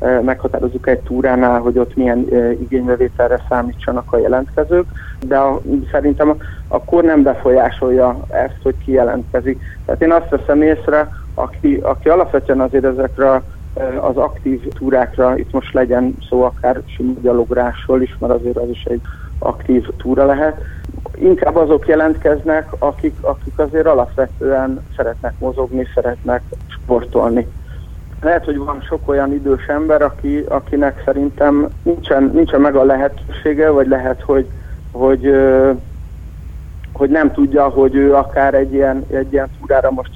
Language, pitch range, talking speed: Hungarian, 125-145 Hz, 135 wpm